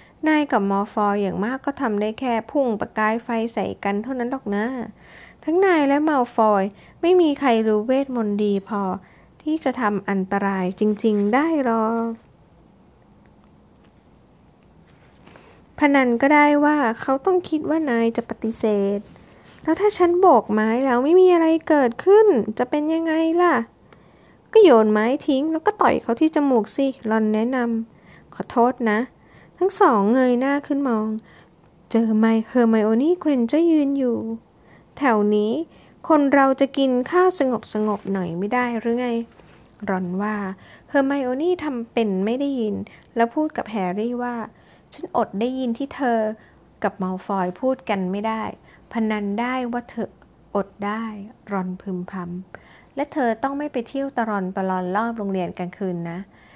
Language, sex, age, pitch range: English, female, 20-39, 210-280 Hz